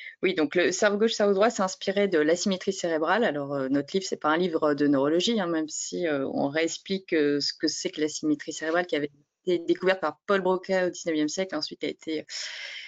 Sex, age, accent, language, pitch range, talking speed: female, 20-39, French, French, 165-210 Hz, 240 wpm